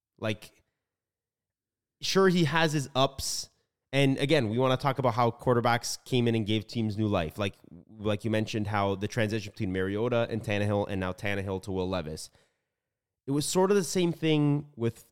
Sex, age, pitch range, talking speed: male, 20-39, 110-155 Hz, 185 wpm